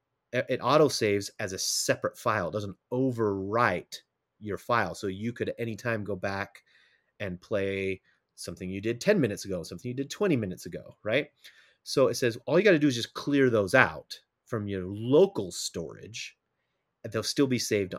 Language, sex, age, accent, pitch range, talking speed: English, male, 30-49, American, 100-135 Hz, 190 wpm